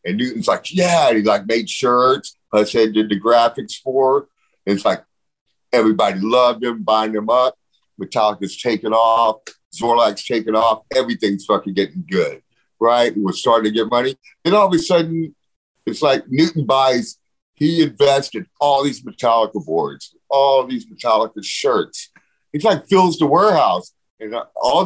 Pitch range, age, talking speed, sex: 110-165 Hz, 50-69, 155 wpm, male